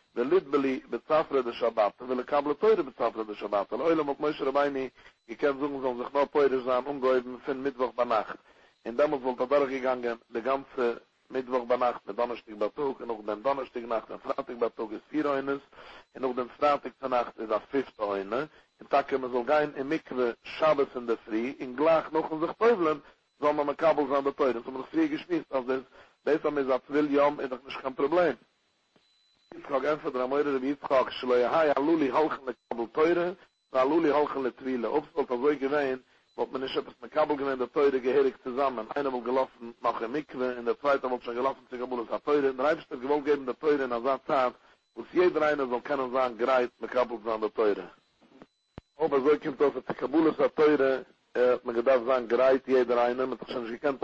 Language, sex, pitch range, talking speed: English, male, 125-145 Hz, 80 wpm